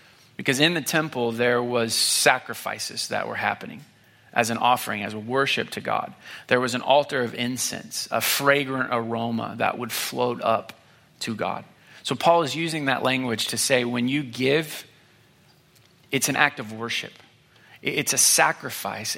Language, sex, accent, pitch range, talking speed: English, male, American, 115-145 Hz, 165 wpm